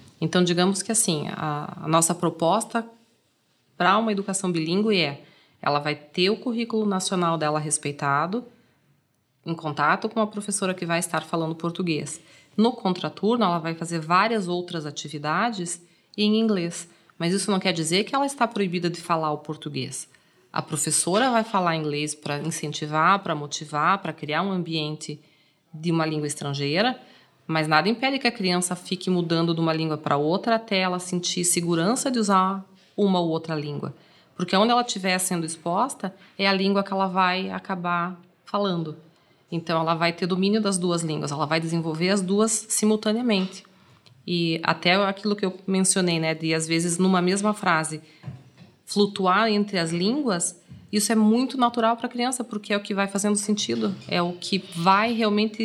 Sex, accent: female, Brazilian